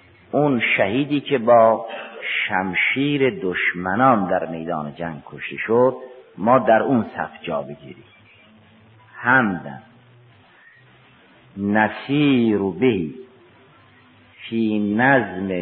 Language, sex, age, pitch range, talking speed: Persian, male, 50-69, 100-125 Hz, 85 wpm